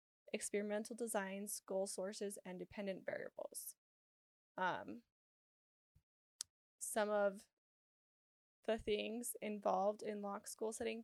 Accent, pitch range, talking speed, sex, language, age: American, 205-245 Hz, 90 wpm, female, English, 10-29